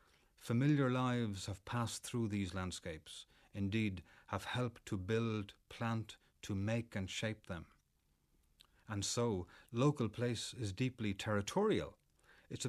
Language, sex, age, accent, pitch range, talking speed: English, male, 30-49, Irish, 95-120 Hz, 125 wpm